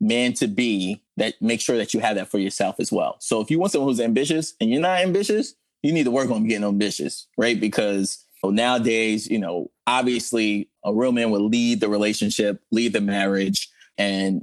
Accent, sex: American, male